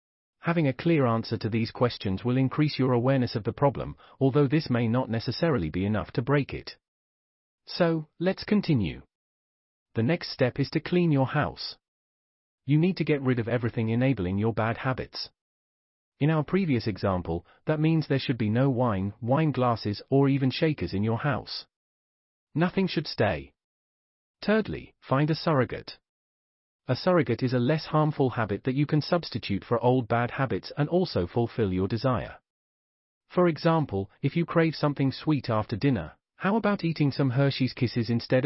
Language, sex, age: English, male, 40-59